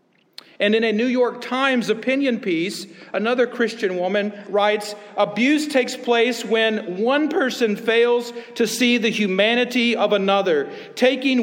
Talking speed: 135 wpm